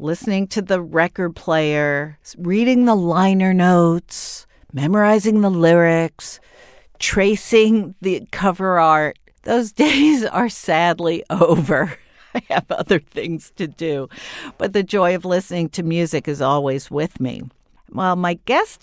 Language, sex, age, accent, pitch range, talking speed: English, female, 50-69, American, 145-195 Hz, 130 wpm